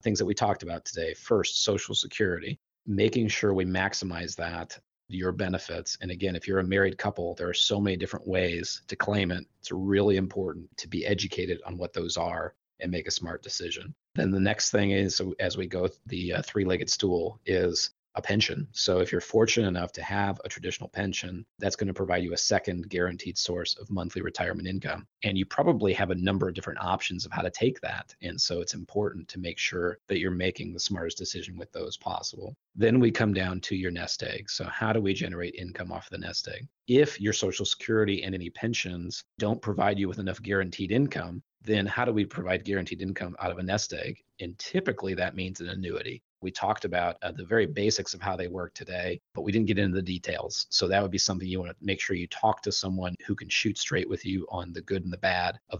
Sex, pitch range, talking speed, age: male, 90-100 Hz, 225 wpm, 30-49